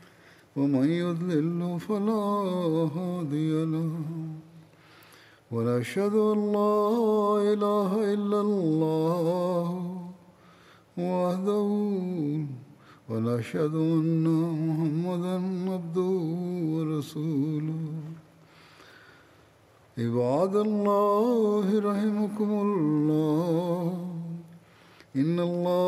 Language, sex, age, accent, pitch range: Malayalam, male, 50-69, native, 155-200 Hz